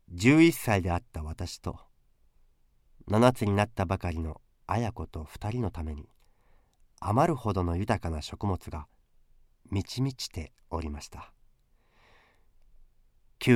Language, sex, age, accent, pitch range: Japanese, male, 40-59, native, 85-120 Hz